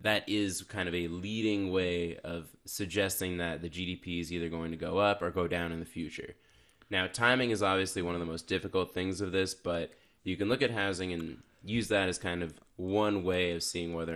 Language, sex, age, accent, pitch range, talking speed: English, male, 20-39, American, 85-100 Hz, 225 wpm